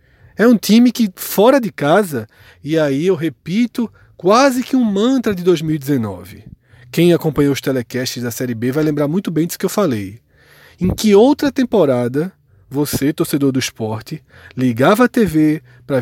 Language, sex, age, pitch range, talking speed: Portuguese, male, 20-39, 120-185 Hz, 165 wpm